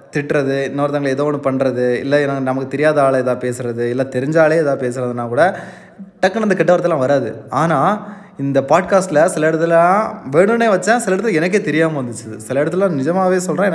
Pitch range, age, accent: 130-185 Hz, 20-39, native